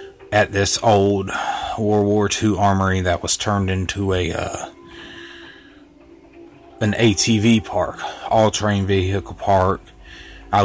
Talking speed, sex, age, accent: 115 wpm, male, 30-49, American